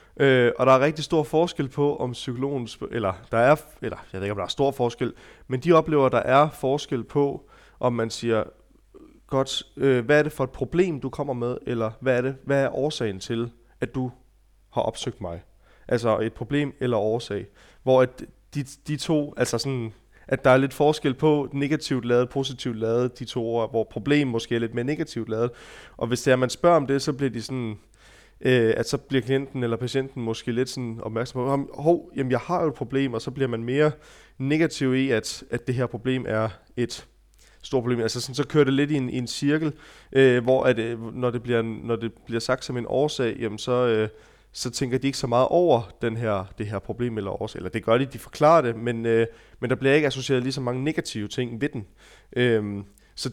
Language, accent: Danish, native